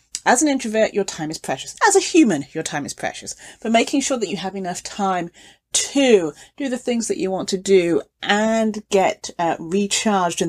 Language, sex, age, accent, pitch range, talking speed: English, female, 40-59, British, 170-225 Hz, 205 wpm